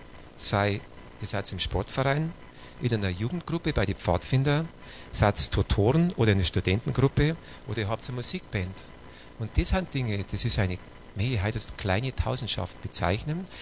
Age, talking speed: 40-59, 150 wpm